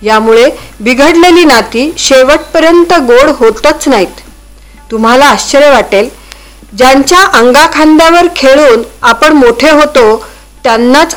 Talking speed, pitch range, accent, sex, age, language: 90 wpm, 235-310 Hz, native, female, 40-59, Marathi